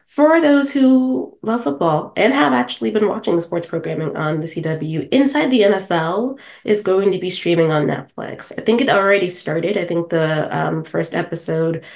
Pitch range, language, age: 160-205 Hz, English, 20-39